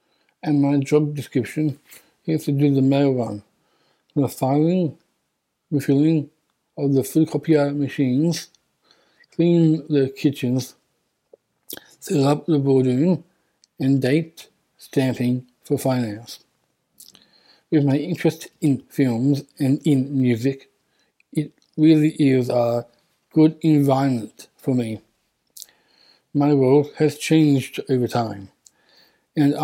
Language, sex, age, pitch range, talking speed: English, male, 60-79, 130-150 Hz, 105 wpm